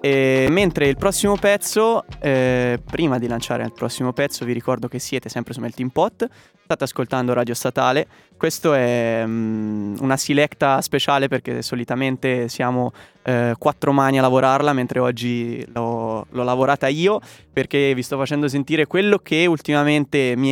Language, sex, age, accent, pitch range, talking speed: Italian, male, 20-39, native, 125-150 Hz, 155 wpm